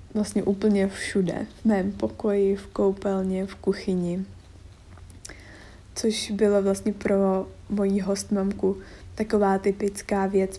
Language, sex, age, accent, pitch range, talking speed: Czech, female, 20-39, native, 170-210 Hz, 110 wpm